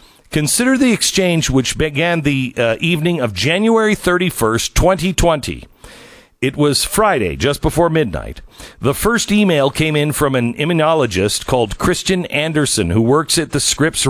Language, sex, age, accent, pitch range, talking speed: English, male, 50-69, American, 120-175 Hz, 145 wpm